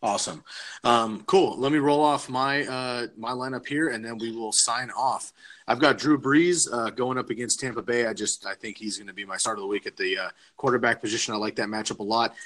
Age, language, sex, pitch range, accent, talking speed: 30-49, English, male, 110-135 Hz, American, 250 wpm